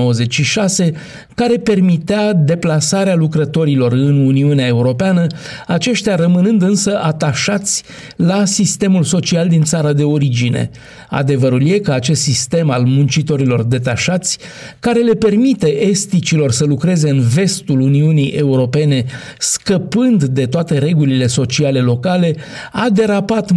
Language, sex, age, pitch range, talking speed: Romanian, male, 50-69, 135-180 Hz, 110 wpm